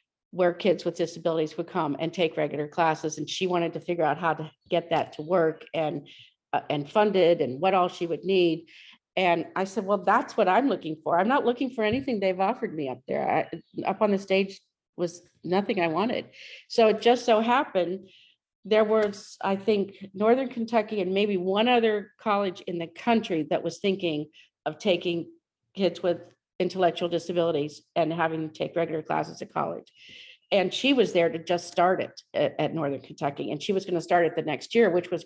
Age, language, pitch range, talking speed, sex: 50-69, English, 165-205 Hz, 205 wpm, female